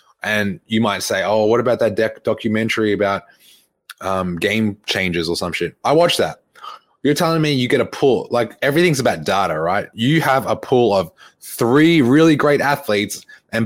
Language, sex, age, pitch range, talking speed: English, male, 20-39, 100-130 Hz, 185 wpm